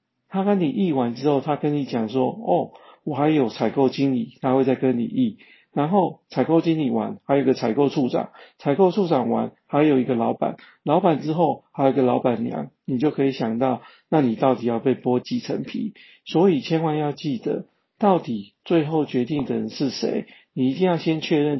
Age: 50-69